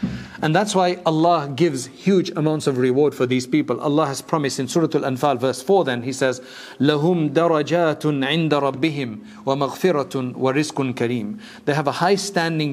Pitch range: 125-160 Hz